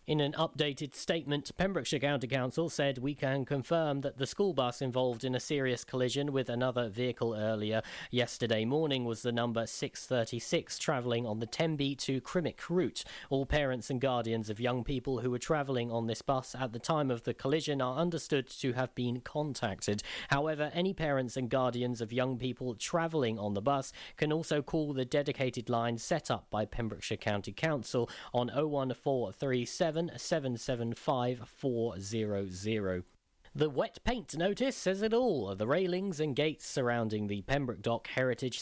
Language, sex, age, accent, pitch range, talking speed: English, male, 40-59, British, 120-160 Hz, 160 wpm